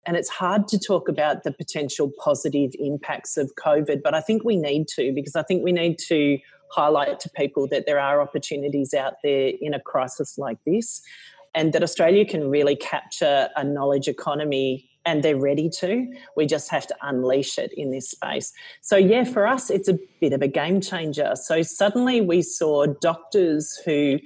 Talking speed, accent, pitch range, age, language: 190 wpm, Australian, 150-195 Hz, 40-59, English